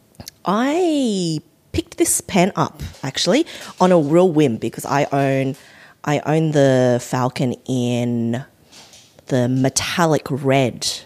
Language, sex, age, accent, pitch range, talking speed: English, female, 30-49, Australian, 125-160 Hz, 115 wpm